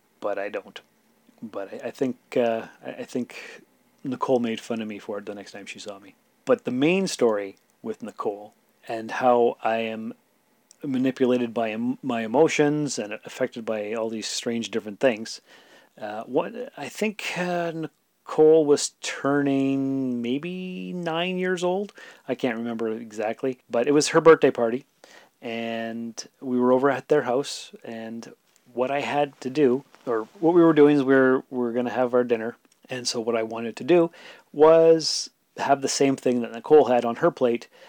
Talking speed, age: 180 wpm, 30-49